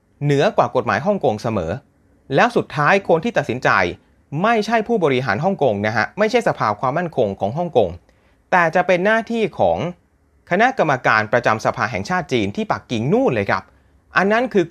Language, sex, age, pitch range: Thai, male, 30-49, 110-180 Hz